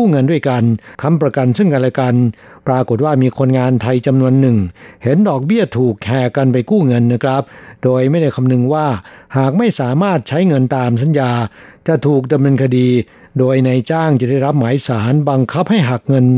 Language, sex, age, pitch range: Thai, male, 60-79, 125-150 Hz